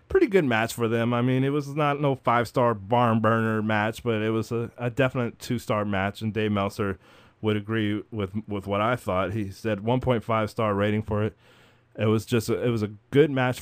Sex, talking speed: male, 235 wpm